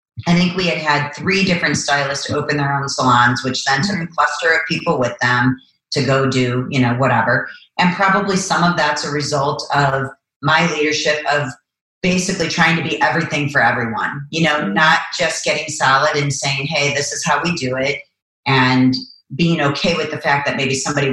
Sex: female